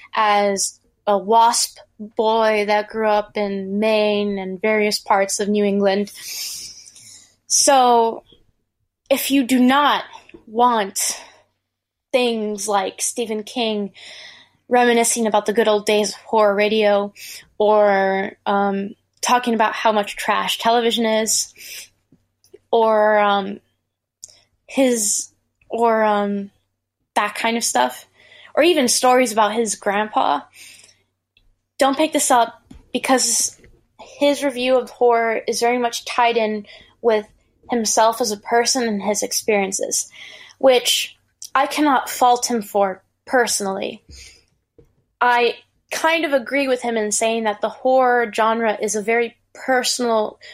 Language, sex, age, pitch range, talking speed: English, female, 10-29, 205-245 Hz, 120 wpm